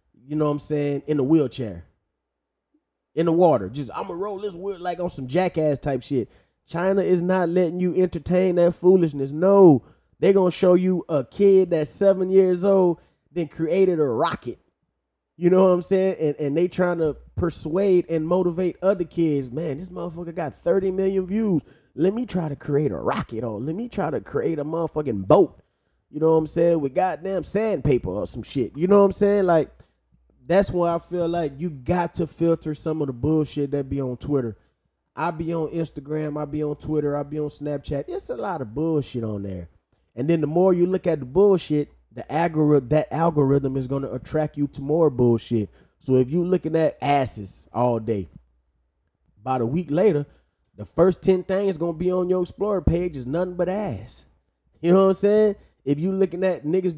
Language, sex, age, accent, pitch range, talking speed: English, male, 20-39, American, 145-180 Hz, 205 wpm